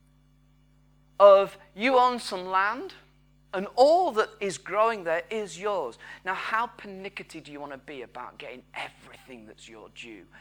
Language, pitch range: English, 140-190 Hz